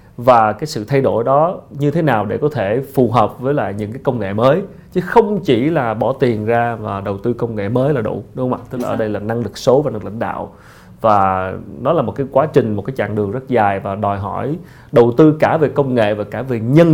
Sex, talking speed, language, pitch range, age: male, 275 wpm, Vietnamese, 110-140 Hz, 20-39